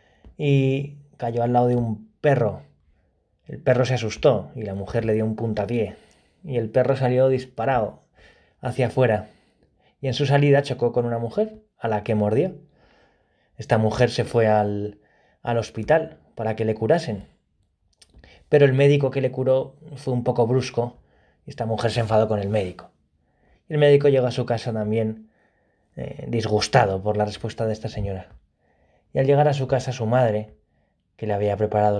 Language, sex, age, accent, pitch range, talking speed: Spanish, male, 20-39, Spanish, 100-125 Hz, 175 wpm